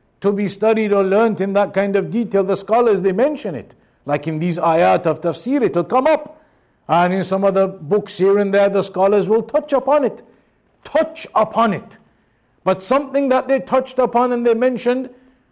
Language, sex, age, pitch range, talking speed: English, male, 50-69, 185-220 Hz, 195 wpm